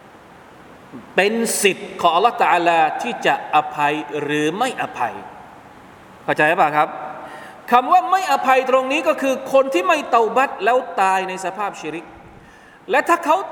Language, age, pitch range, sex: Thai, 20-39, 185-275 Hz, male